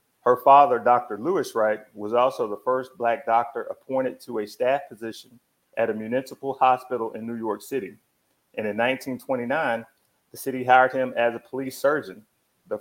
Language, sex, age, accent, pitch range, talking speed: English, male, 30-49, American, 120-140 Hz, 170 wpm